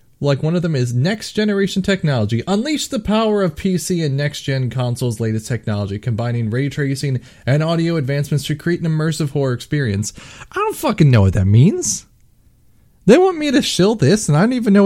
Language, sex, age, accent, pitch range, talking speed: English, male, 30-49, American, 120-185 Hz, 190 wpm